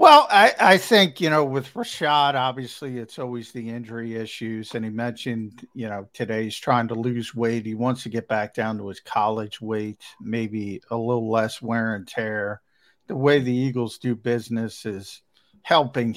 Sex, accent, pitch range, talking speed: male, American, 105-125 Hz, 185 wpm